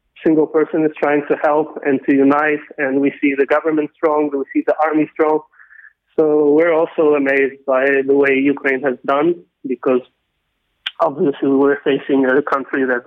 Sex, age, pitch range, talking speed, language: male, 20-39, 135-155 Hz, 170 wpm, English